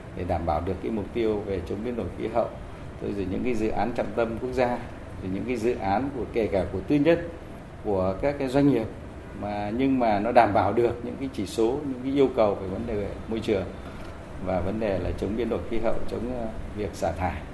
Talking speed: 245 wpm